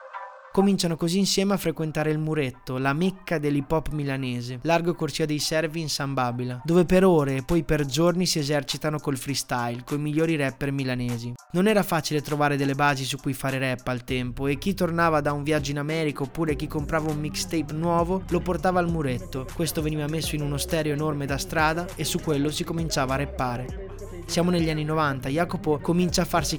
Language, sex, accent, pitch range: Italian, male, native, 140-170 Hz